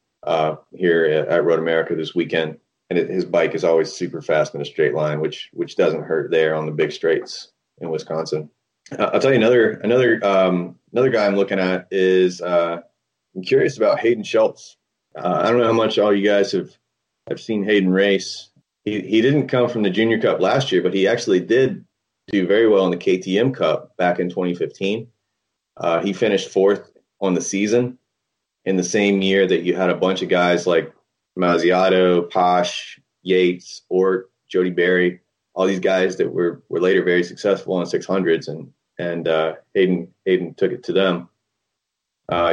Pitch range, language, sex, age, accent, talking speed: 85-100 Hz, English, male, 30-49, American, 190 wpm